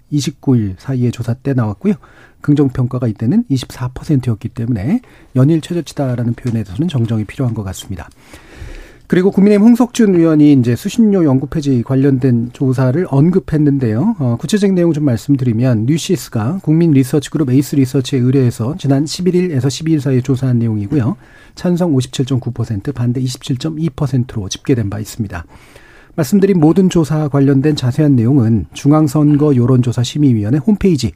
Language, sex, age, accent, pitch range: Korean, male, 40-59, native, 120-155 Hz